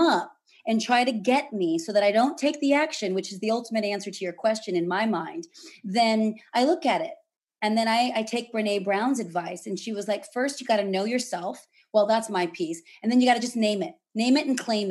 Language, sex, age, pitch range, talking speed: English, female, 30-49, 190-235 Hz, 255 wpm